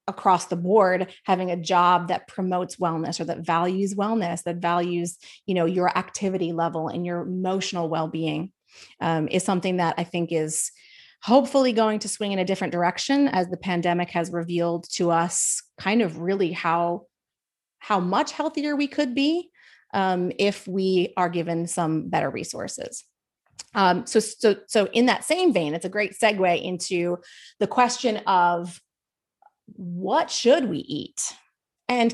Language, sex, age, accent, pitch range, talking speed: English, female, 30-49, American, 175-220 Hz, 160 wpm